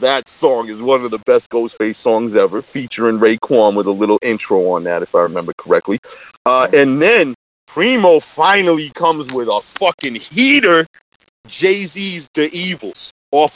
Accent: American